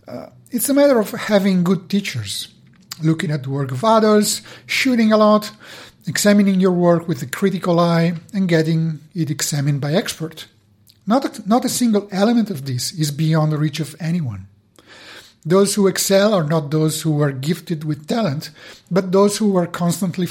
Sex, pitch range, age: male, 140-190 Hz, 50-69